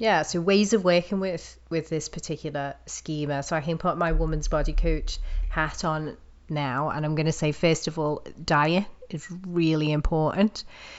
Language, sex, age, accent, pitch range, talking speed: English, female, 30-49, British, 150-175 Hz, 180 wpm